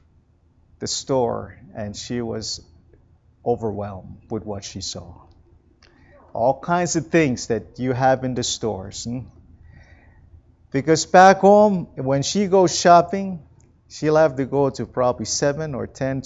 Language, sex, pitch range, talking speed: English, male, 105-140 Hz, 135 wpm